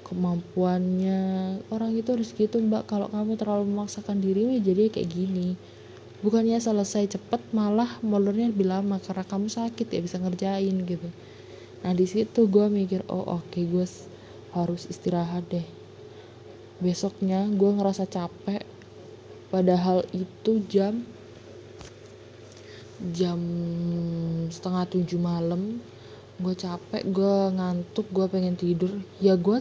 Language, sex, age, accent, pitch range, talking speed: Indonesian, female, 20-39, native, 175-205 Hz, 120 wpm